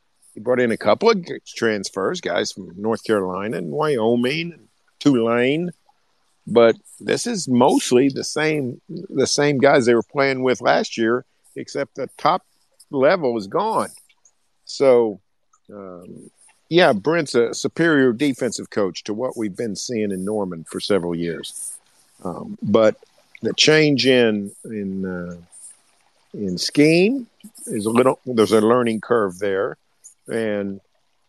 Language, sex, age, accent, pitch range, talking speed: English, male, 50-69, American, 105-150 Hz, 135 wpm